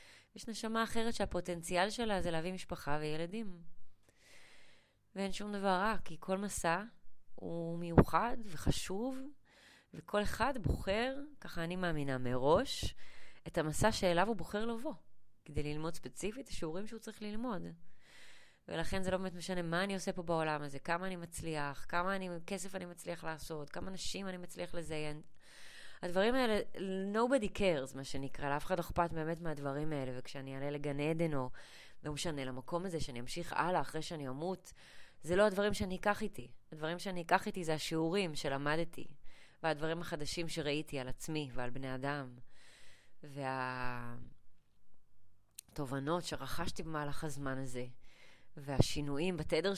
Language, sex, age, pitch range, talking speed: Hebrew, female, 20-39, 145-190 Hz, 145 wpm